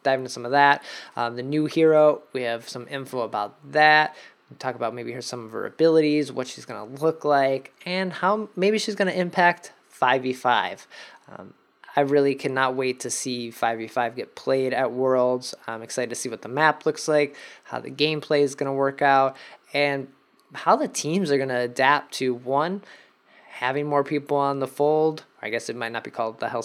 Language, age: English, 20-39